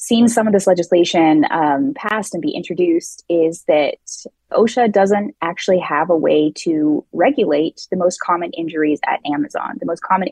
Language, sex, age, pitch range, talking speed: English, female, 20-39, 165-230 Hz, 170 wpm